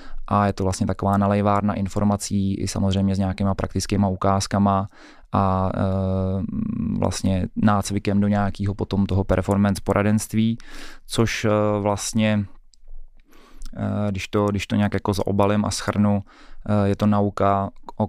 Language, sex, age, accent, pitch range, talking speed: Czech, male, 20-39, native, 95-105 Hz, 125 wpm